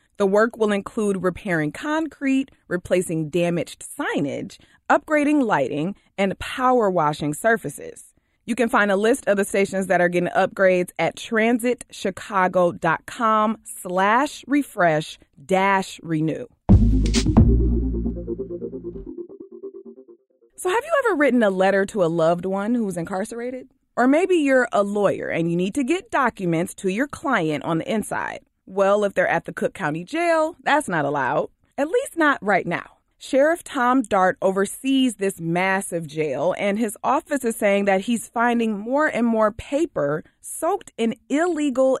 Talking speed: 145 wpm